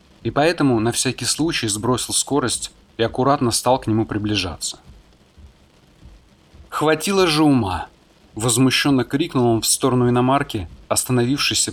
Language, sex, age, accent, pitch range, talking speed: Russian, male, 30-49, native, 110-140 Hz, 120 wpm